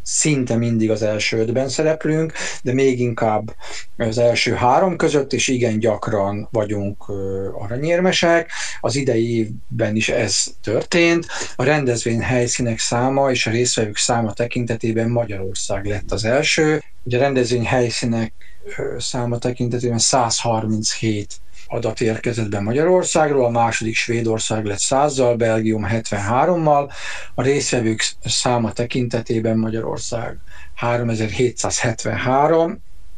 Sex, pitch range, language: male, 110-130 Hz, Hungarian